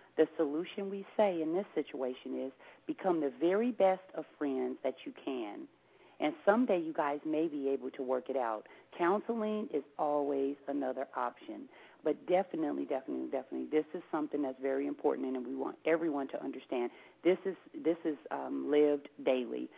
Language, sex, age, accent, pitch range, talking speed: English, female, 40-59, American, 130-160 Hz, 170 wpm